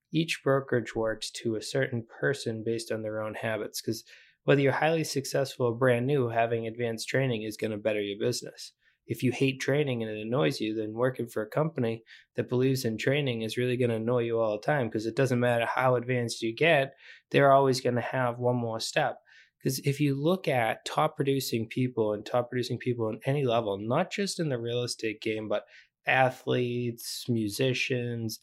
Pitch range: 115-140 Hz